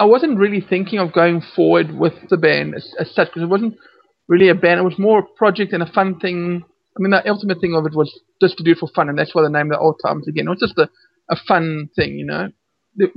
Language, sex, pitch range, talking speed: English, male, 165-195 Hz, 280 wpm